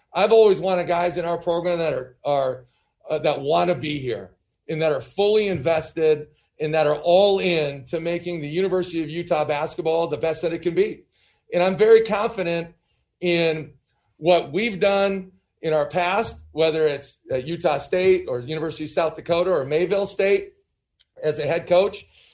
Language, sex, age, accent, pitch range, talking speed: English, male, 40-59, American, 160-195 Hz, 175 wpm